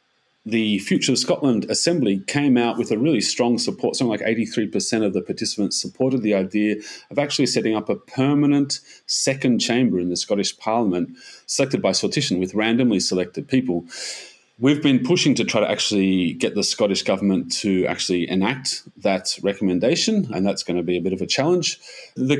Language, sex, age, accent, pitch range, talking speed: English, male, 30-49, Australian, 95-125 Hz, 180 wpm